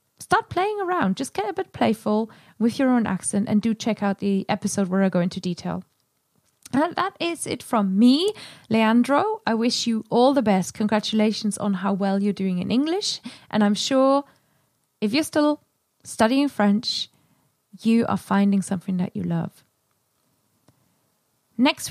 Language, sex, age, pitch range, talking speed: English, female, 20-39, 200-270 Hz, 165 wpm